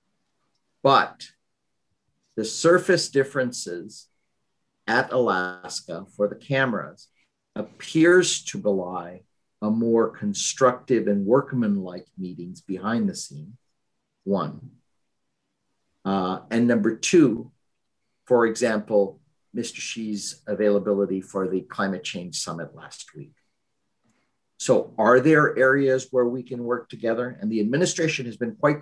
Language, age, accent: English, 50-69, American